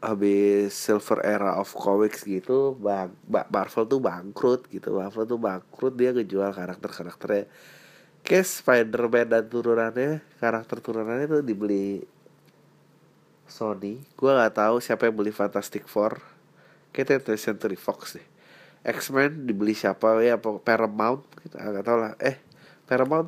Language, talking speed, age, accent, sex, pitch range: Indonesian, 120 wpm, 30-49, native, male, 105-145 Hz